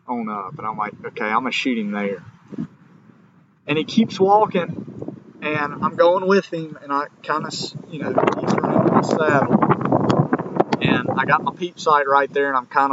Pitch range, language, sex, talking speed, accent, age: 120-170 Hz, English, male, 190 wpm, American, 30-49